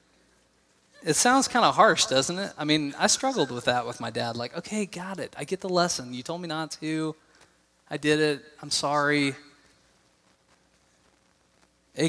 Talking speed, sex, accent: 175 wpm, male, American